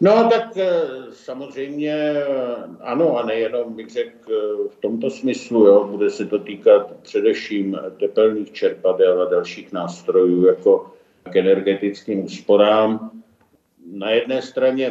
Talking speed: 115 wpm